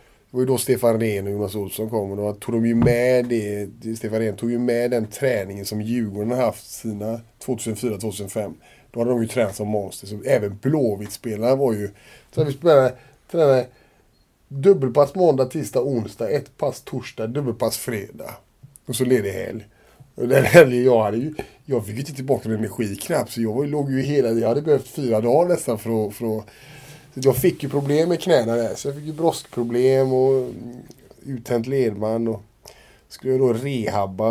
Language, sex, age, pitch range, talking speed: English, male, 30-49, 110-135 Hz, 185 wpm